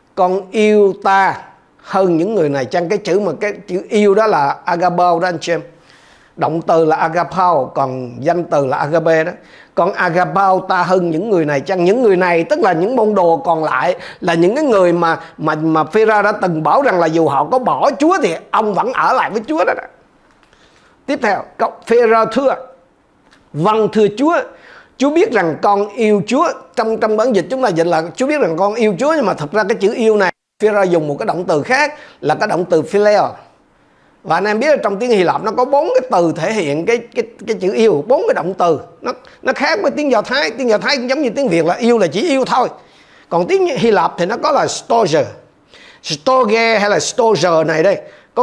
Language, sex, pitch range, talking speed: Vietnamese, male, 175-235 Hz, 230 wpm